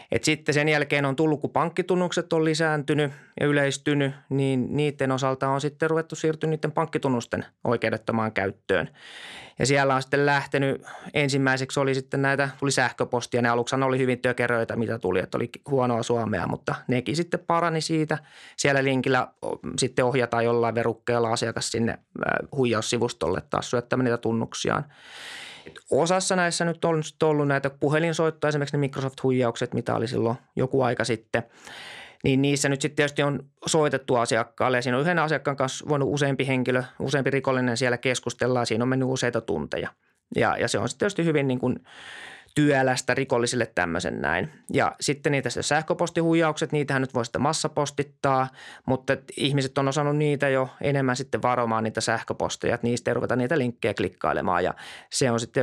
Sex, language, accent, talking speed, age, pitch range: male, Finnish, native, 160 wpm, 20-39, 125-150 Hz